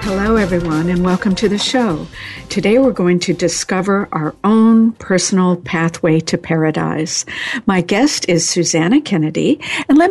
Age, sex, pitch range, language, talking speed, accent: 60-79, female, 170-215 Hz, English, 150 wpm, American